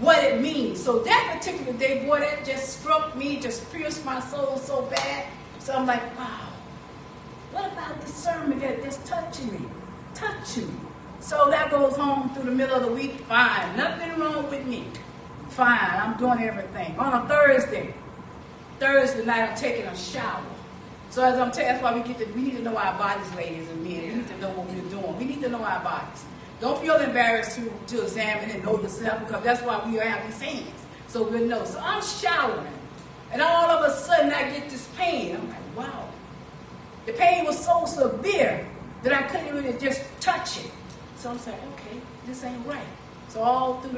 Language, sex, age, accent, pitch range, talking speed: English, female, 40-59, American, 230-285 Hz, 200 wpm